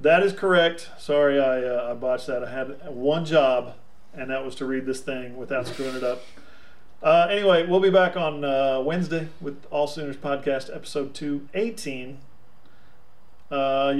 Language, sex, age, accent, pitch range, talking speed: English, male, 40-59, American, 135-175 Hz, 165 wpm